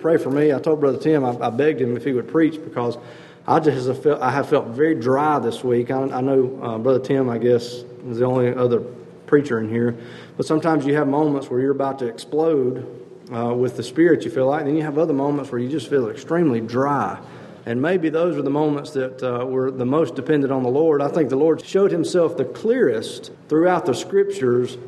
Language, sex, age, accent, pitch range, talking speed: English, male, 40-59, American, 125-150 Hz, 215 wpm